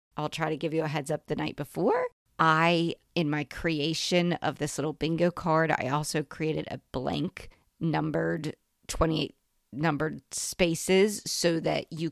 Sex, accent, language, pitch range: female, American, English, 155-185 Hz